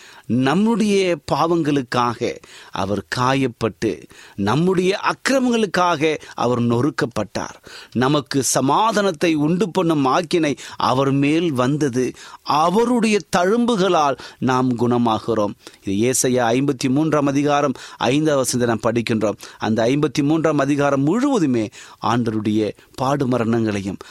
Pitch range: 110-155 Hz